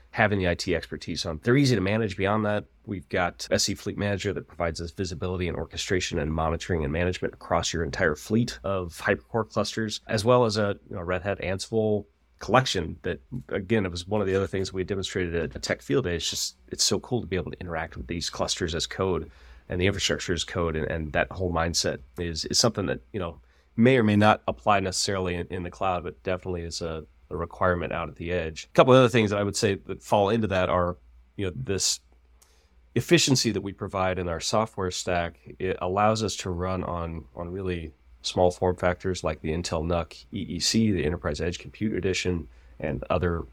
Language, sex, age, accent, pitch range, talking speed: English, male, 30-49, American, 85-105 Hz, 220 wpm